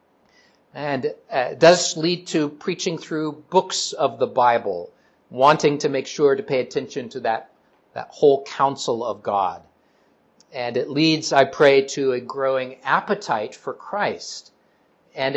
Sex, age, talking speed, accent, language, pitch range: male, 50-69, 150 wpm, American, English, 125-165 Hz